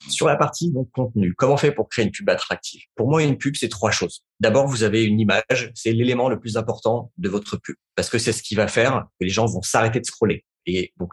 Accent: French